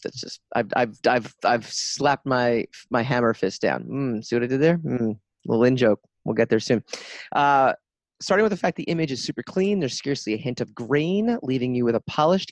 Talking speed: 225 wpm